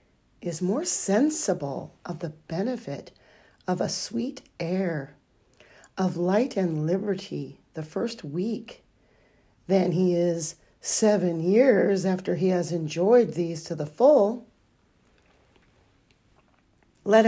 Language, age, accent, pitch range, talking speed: English, 40-59, American, 165-210 Hz, 110 wpm